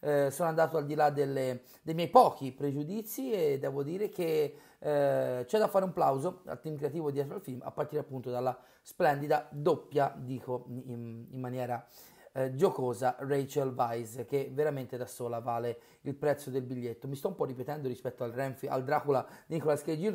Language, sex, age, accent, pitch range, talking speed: Italian, male, 30-49, native, 130-165 Hz, 185 wpm